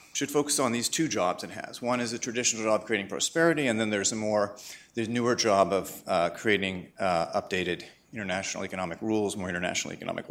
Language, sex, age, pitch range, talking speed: English, male, 40-59, 110-140 Hz, 205 wpm